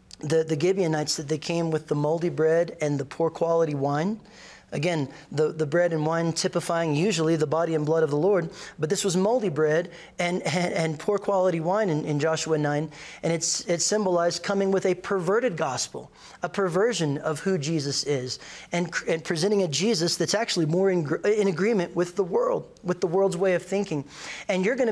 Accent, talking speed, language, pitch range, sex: American, 200 wpm, English, 160-195 Hz, male